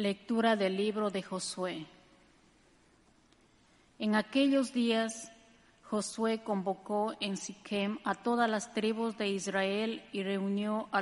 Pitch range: 190-225 Hz